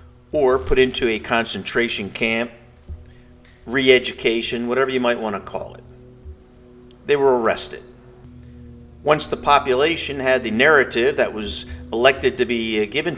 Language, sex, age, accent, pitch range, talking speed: English, male, 50-69, American, 105-135 Hz, 130 wpm